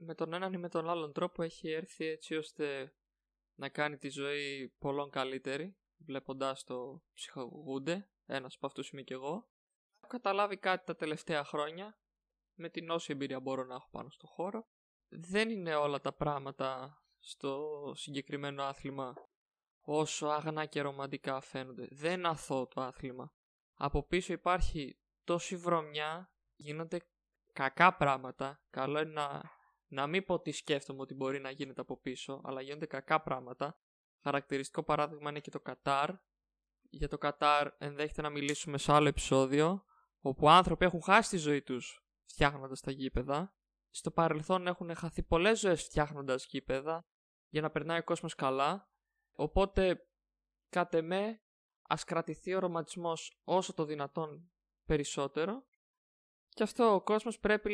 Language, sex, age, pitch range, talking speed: Greek, male, 20-39, 140-175 Hz, 145 wpm